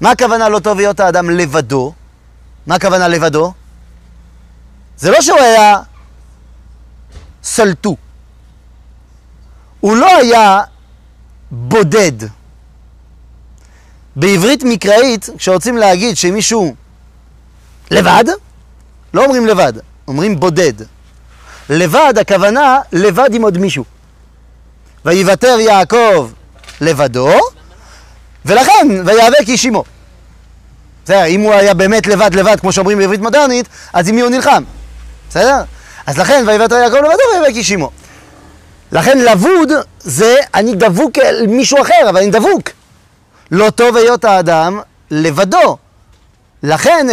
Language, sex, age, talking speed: French, male, 30-49, 95 wpm